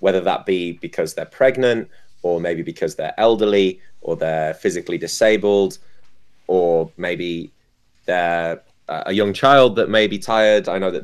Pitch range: 90-105 Hz